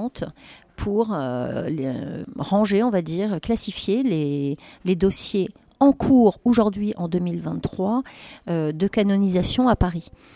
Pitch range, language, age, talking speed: 180-230 Hz, French, 40-59, 115 wpm